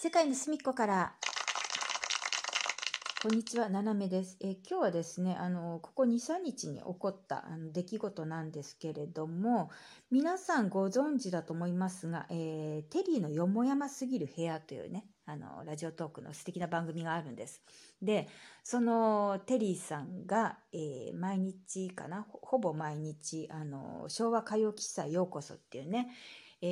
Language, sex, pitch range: Japanese, female, 165-220 Hz